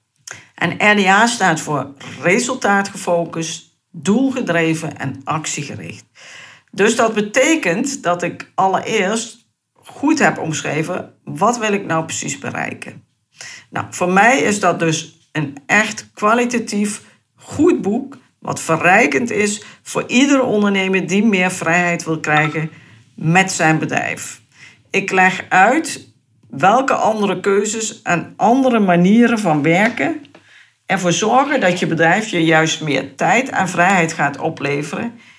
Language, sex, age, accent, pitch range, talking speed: Dutch, female, 50-69, Dutch, 160-225 Hz, 120 wpm